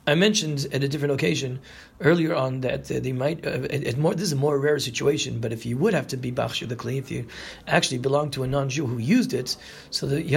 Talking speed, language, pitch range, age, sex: 260 wpm, English, 125-155 Hz, 40-59, male